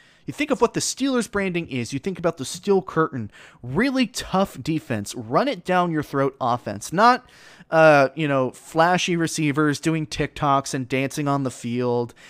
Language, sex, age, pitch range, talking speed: English, male, 20-39, 130-185 Hz, 175 wpm